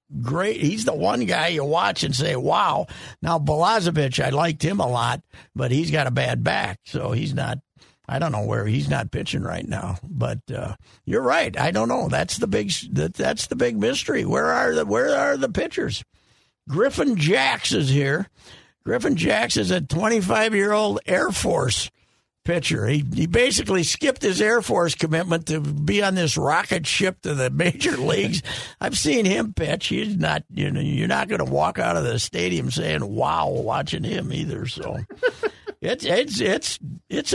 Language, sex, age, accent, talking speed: English, male, 50-69, American, 185 wpm